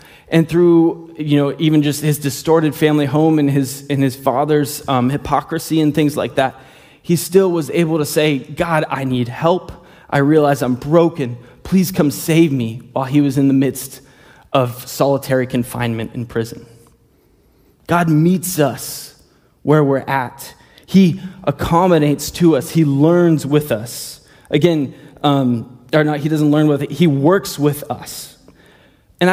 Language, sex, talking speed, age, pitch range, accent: English, male, 160 wpm, 20-39, 140-170 Hz, American